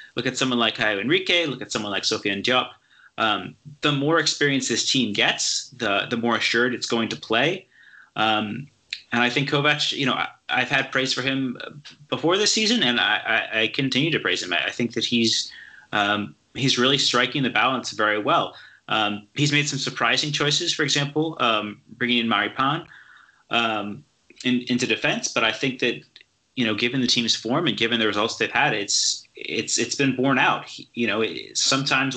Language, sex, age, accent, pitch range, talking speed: English, male, 30-49, American, 115-140 Hz, 200 wpm